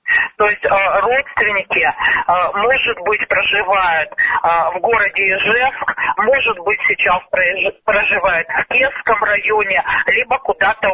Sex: male